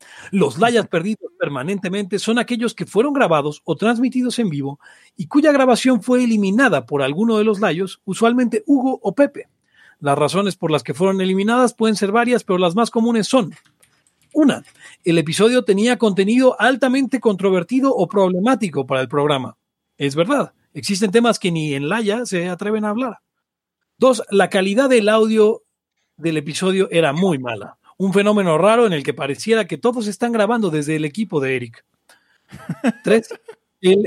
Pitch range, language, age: 175-240 Hz, Spanish, 40-59